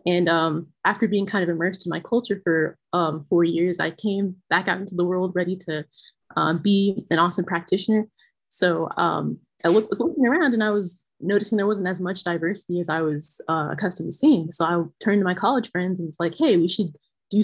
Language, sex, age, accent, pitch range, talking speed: English, female, 20-39, American, 170-205 Hz, 225 wpm